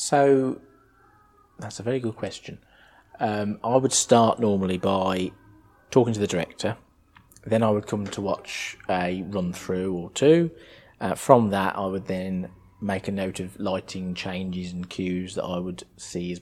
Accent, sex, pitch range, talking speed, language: British, male, 90-105 Hz, 165 wpm, English